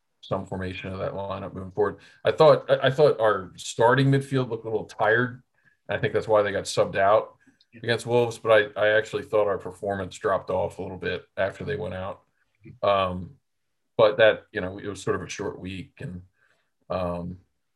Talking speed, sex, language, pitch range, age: 200 wpm, male, English, 95-115 Hz, 40-59